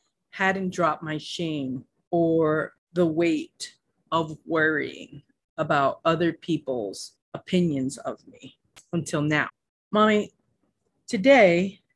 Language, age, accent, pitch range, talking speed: English, 30-49, American, 150-190 Hz, 95 wpm